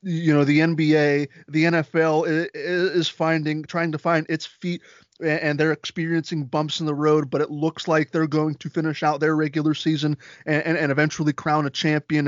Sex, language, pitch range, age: male, English, 150-175 Hz, 20-39